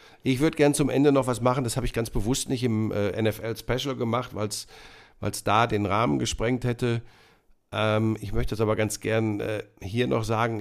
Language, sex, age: German, male, 50-69